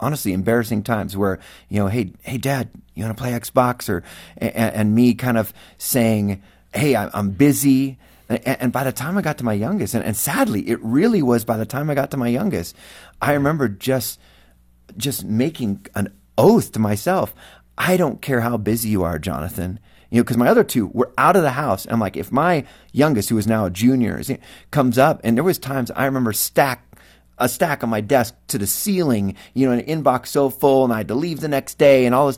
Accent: American